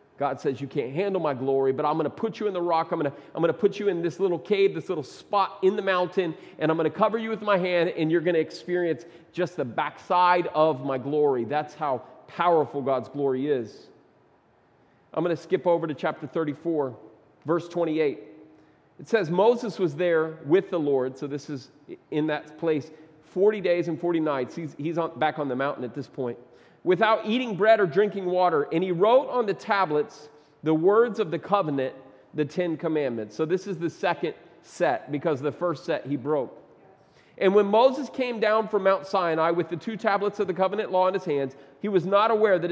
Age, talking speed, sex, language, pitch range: 40-59, 215 wpm, male, English, 150-195 Hz